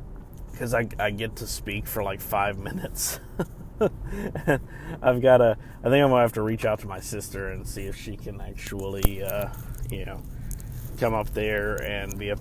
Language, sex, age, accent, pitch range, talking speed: English, male, 30-49, American, 100-125 Hz, 190 wpm